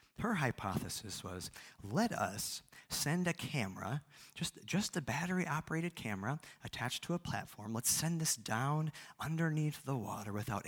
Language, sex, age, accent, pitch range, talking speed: English, male, 40-59, American, 105-145 Hz, 140 wpm